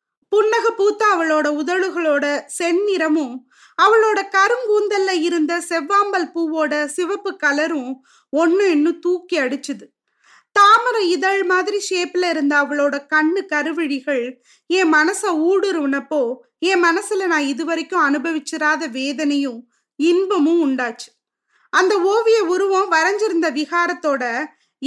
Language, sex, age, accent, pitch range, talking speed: Tamil, female, 20-39, native, 295-385 Hz, 90 wpm